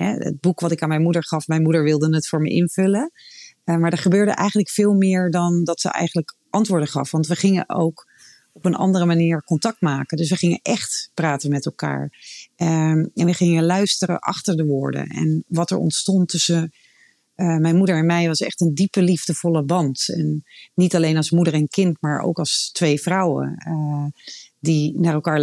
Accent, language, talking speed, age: Dutch, Dutch, 190 wpm, 40-59